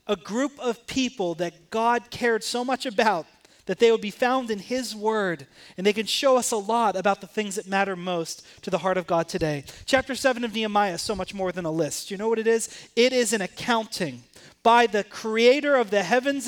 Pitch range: 170-230 Hz